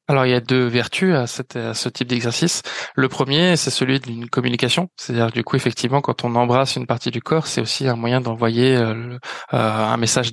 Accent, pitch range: French, 125-145 Hz